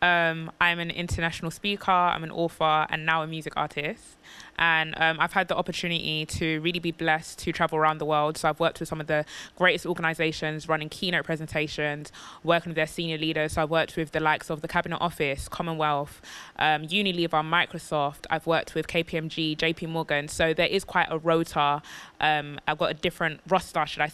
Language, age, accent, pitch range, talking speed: English, 20-39, British, 155-175 Hz, 195 wpm